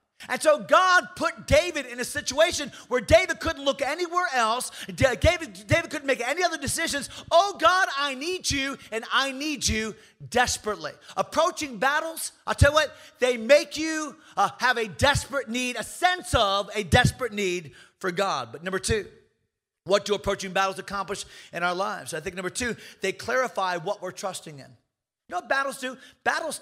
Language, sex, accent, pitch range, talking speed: English, male, American, 205-295 Hz, 180 wpm